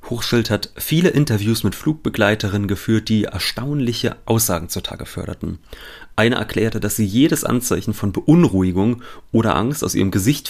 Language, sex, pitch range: German, male, 100-125 Hz